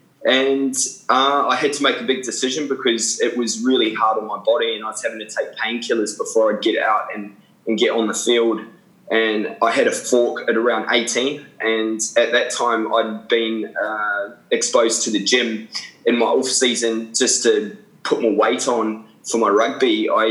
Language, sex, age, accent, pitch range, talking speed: English, male, 20-39, Australian, 105-120 Hz, 195 wpm